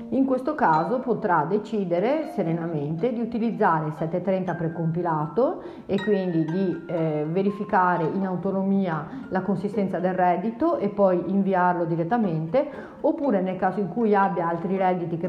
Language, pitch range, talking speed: Italian, 180-230 Hz, 135 wpm